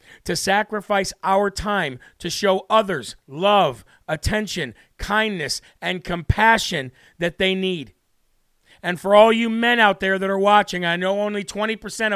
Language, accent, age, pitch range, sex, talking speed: English, American, 40-59, 180-220 Hz, male, 145 wpm